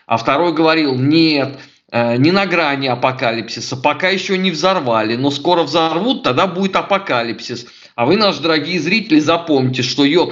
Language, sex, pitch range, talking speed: Russian, male, 135-200 Hz, 150 wpm